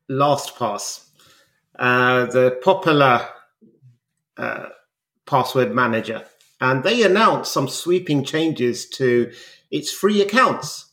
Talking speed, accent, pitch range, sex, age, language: 95 wpm, British, 125-160 Hz, male, 30-49, English